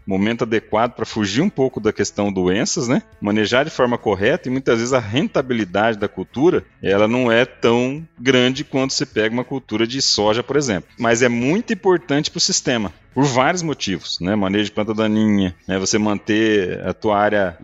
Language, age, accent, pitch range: Portuguese, 40-59, Brazilian, 100-125 Hz